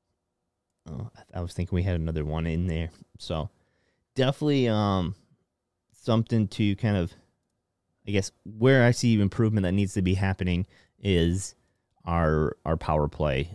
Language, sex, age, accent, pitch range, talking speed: English, male, 30-49, American, 90-110 Hz, 155 wpm